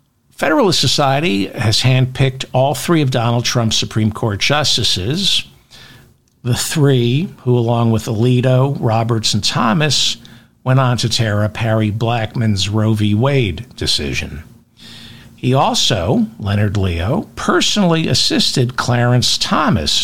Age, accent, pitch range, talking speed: 60-79, American, 110-130 Hz, 120 wpm